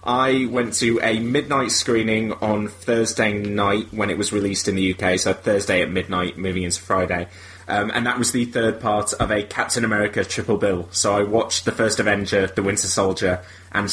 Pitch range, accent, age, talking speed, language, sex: 95-130 Hz, British, 20-39, 200 wpm, English, male